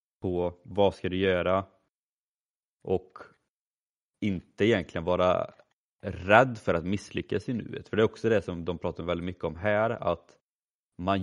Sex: male